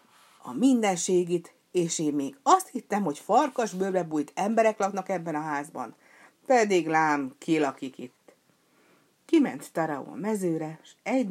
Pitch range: 150-205 Hz